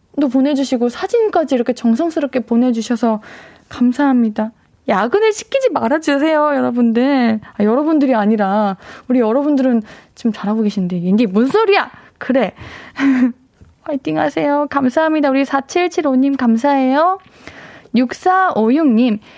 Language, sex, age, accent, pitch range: Korean, female, 20-39, native, 210-290 Hz